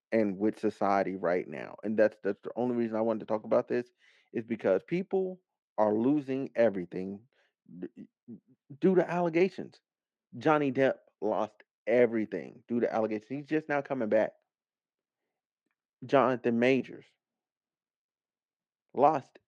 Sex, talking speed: male, 130 wpm